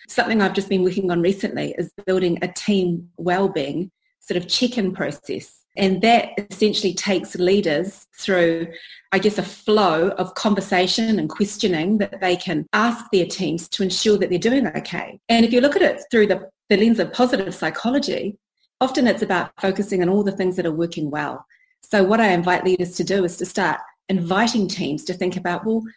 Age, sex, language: 30-49, female, English